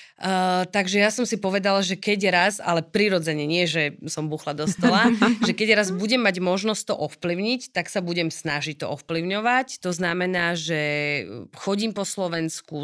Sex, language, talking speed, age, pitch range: female, Slovak, 170 wpm, 30-49, 160-190 Hz